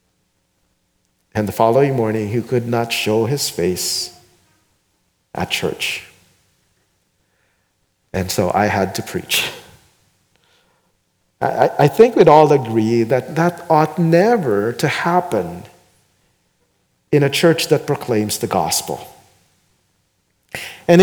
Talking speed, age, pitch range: 105 wpm, 50-69, 130-180 Hz